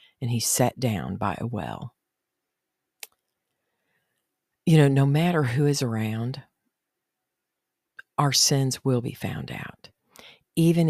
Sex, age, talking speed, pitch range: female, 50-69, 115 wpm, 115-145 Hz